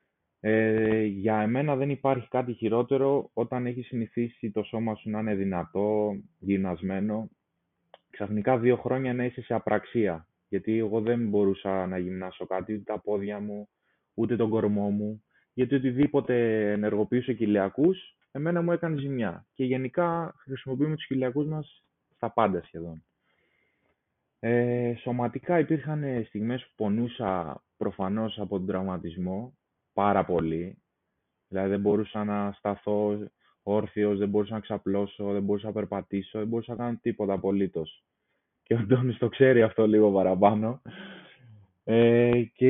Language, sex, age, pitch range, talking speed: Greek, male, 20-39, 100-125 Hz, 135 wpm